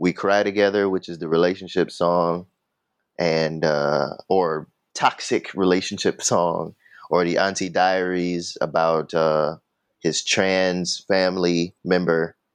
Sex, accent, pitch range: male, American, 85-100 Hz